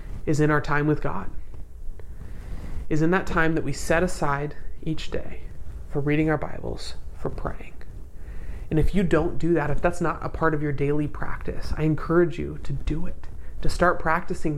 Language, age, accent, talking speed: English, 30-49, American, 190 wpm